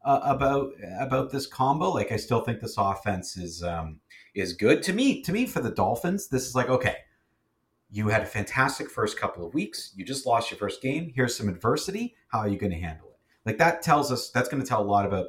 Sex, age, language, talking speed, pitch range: male, 40-59, English, 240 wpm, 100-130 Hz